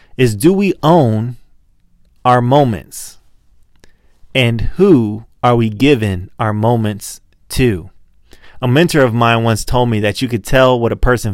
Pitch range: 105-140 Hz